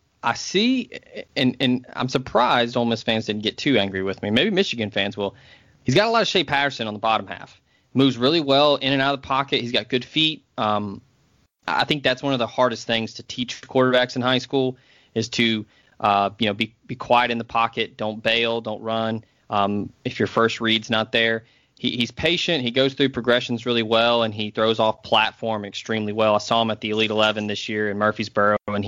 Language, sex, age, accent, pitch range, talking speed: English, male, 20-39, American, 110-130 Hz, 225 wpm